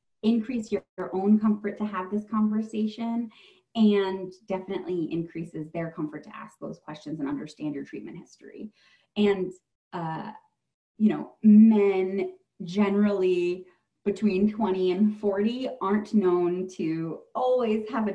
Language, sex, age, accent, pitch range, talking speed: English, female, 30-49, American, 175-230 Hz, 130 wpm